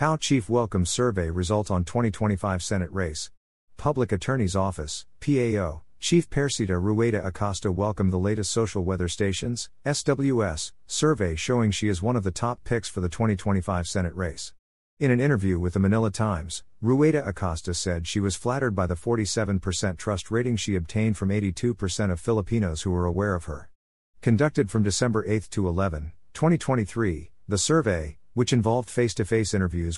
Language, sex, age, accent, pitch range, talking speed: English, male, 50-69, American, 90-115 Hz, 160 wpm